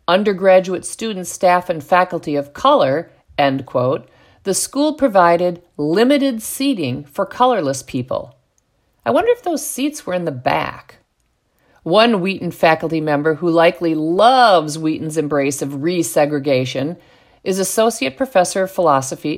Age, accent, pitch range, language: 50-69, American, 155-210 Hz, English